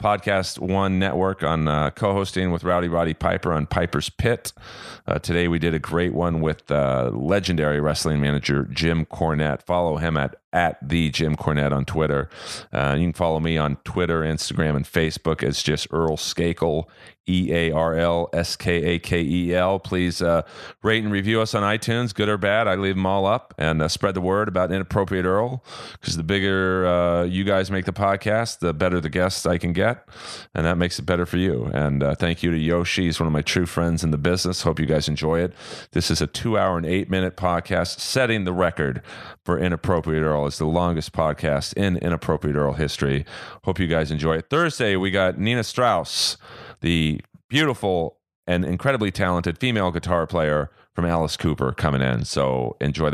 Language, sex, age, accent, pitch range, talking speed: English, male, 30-49, American, 80-95 Hz, 185 wpm